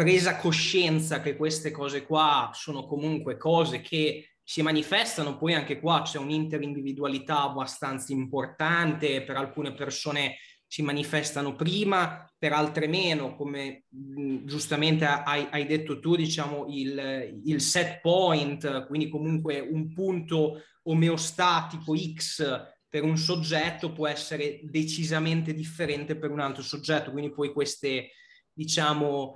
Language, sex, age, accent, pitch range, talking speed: Italian, male, 20-39, native, 145-170 Hz, 125 wpm